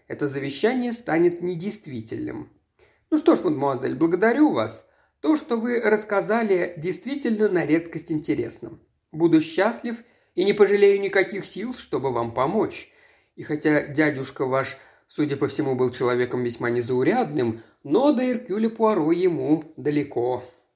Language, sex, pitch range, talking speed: Russian, male, 150-240 Hz, 130 wpm